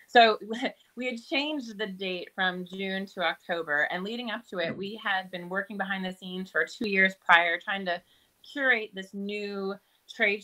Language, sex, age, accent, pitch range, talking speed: English, female, 30-49, American, 175-225 Hz, 185 wpm